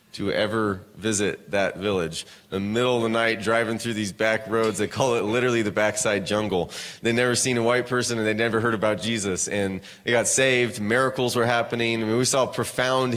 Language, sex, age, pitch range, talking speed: English, male, 30-49, 110-130 Hz, 215 wpm